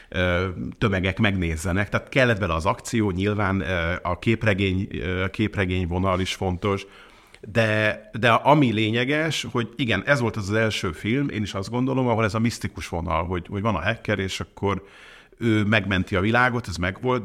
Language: Hungarian